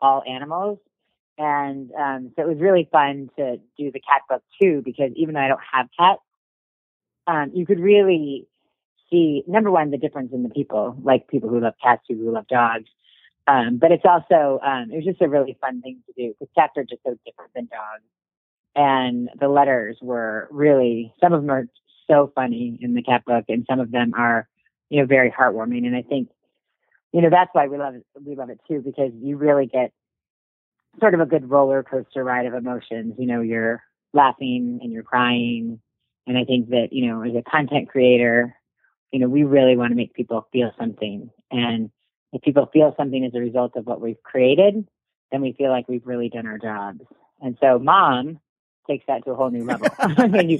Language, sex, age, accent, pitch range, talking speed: English, female, 40-59, American, 120-150 Hz, 210 wpm